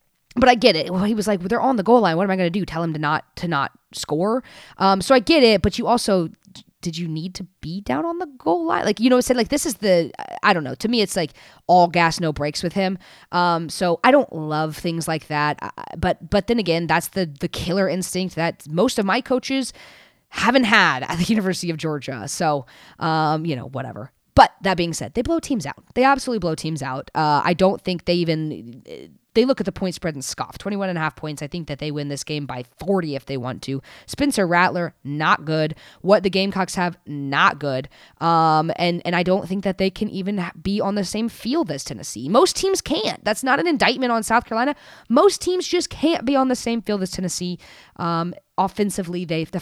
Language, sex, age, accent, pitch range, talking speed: English, female, 20-39, American, 160-215 Hz, 240 wpm